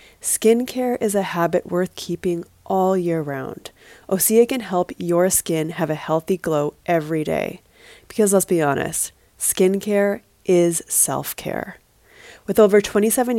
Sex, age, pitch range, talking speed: female, 20-39, 165-205 Hz, 135 wpm